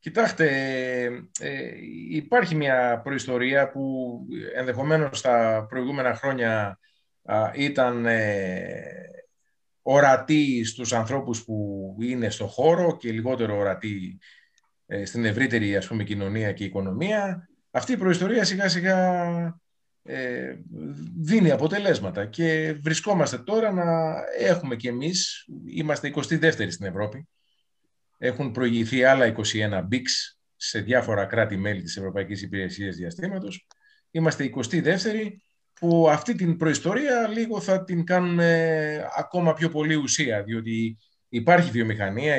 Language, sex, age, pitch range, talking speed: Greek, male, 30-49, 110-165 Hz, 110 wpm